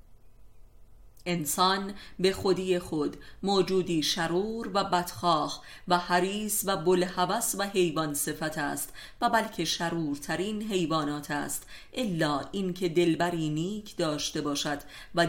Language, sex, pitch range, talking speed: Persian, female, 155-195 Hz, 110 wpm